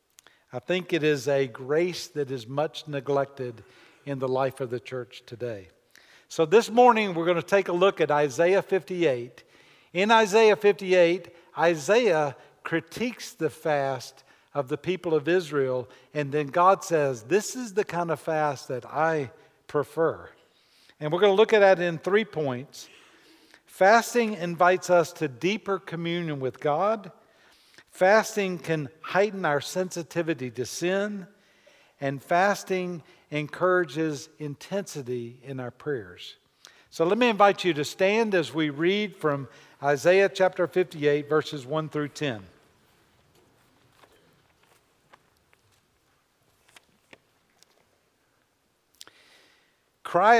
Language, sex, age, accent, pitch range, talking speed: English, male, 50-69, American, 145-190 Hz, 125 wpm